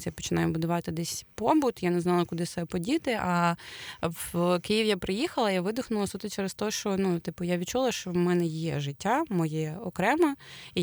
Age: 20-39